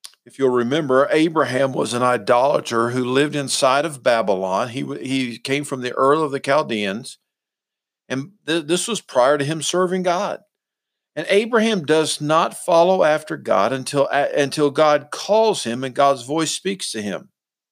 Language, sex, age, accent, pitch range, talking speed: English, male, 50-69, American, 135-170 Hz, 165 wpm